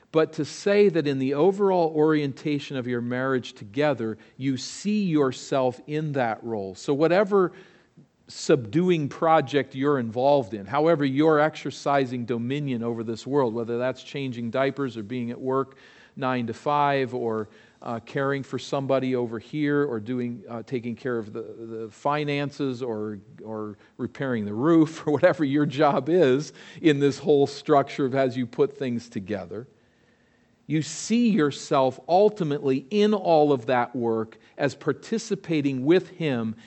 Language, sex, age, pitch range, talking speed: English, male, 40-59, 120-150 Hz, 150 wpm